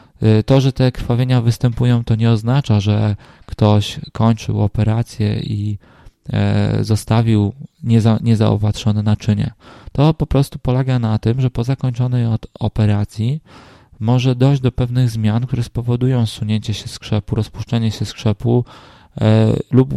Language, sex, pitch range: Polish, male, 110-125 Hz